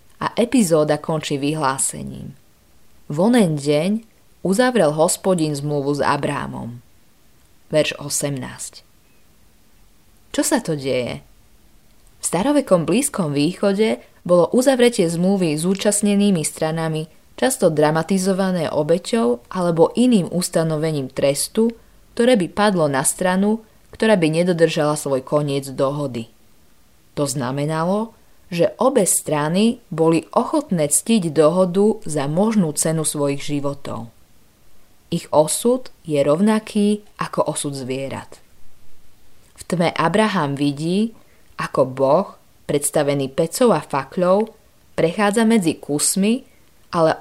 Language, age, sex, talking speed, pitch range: Slovak, 20-39, female, 100 wpm, 145-205 Hz